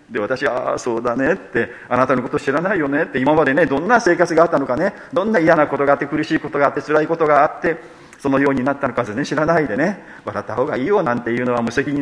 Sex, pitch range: male, 130-175 Hz